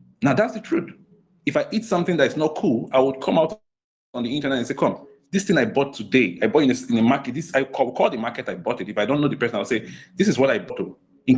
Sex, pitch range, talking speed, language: male, 125-190 Hz, 290 wpm, English